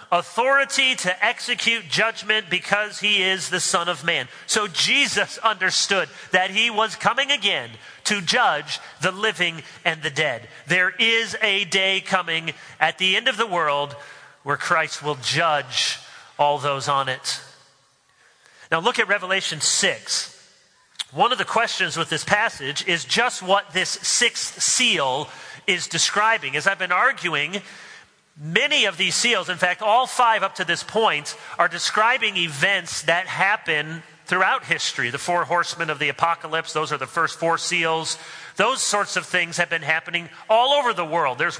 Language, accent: English, American